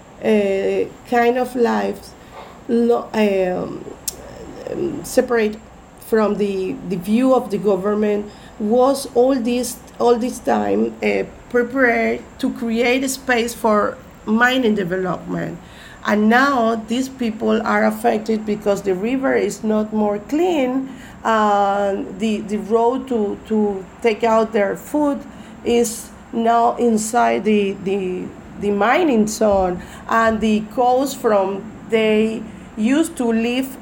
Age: 40-59